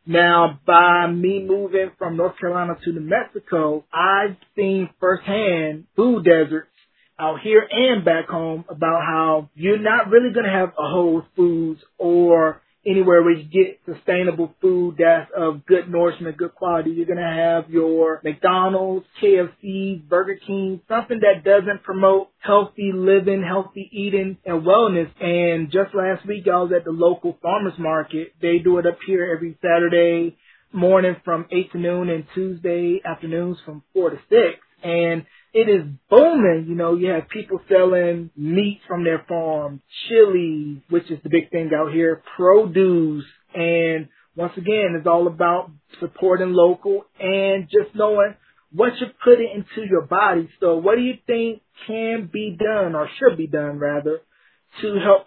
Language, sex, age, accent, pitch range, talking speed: English, male, 20-39, American, 165-195 Hz, 160 wpm